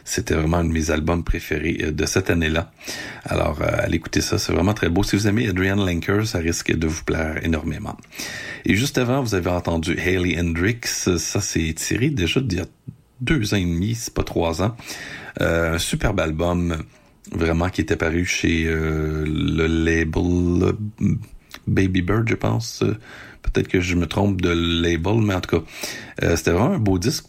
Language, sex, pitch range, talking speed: French, male, 85-105 Hz, 190 wpm